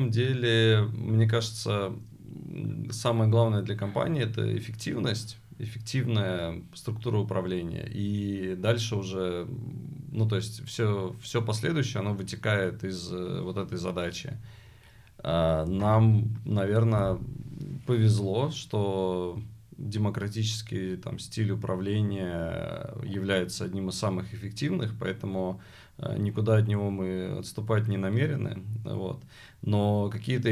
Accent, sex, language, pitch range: native, male, Russian, 95-115 Hz